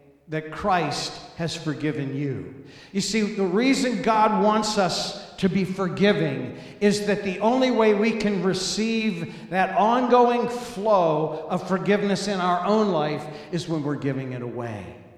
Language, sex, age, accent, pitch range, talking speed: English, male, 50-69, American, 180-220 Hz, 150 wpm